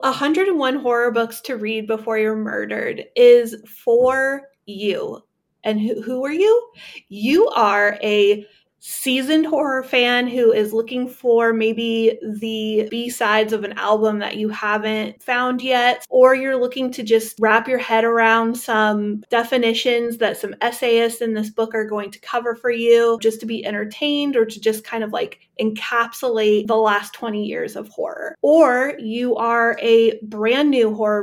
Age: 30-49